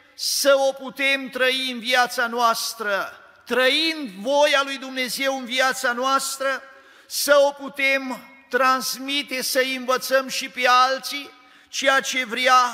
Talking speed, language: 120 wpm, Romanian